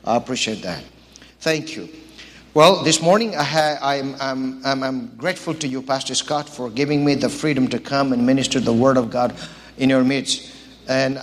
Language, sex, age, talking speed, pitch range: English, male, 50-69, 190 wpm, 130-155 Hz